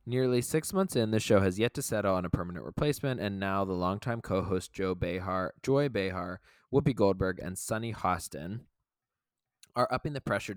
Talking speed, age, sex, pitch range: 180 wpm, 20-39, male, 95-120 Hz